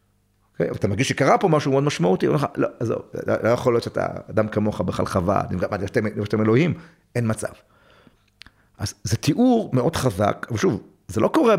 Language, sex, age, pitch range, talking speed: Hebrew, male, 40-59, 100-130 Hz, 165 wpm